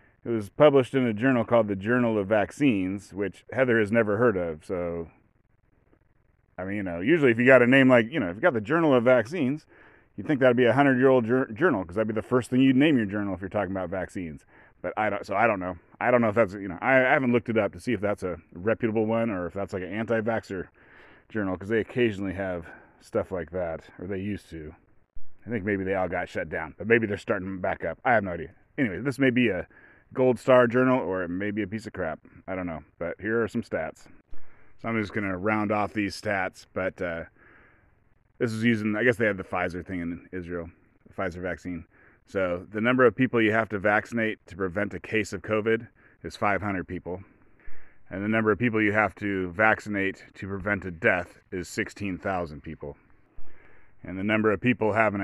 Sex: male